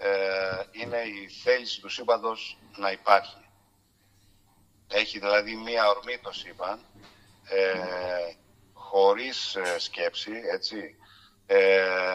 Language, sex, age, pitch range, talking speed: Greek, male, 50-69, 100-120 Hz, 90 wpm